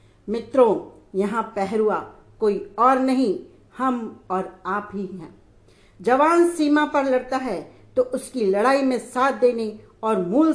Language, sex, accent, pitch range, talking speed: Hindi, female, native, 205-270 Hz, 135 wpm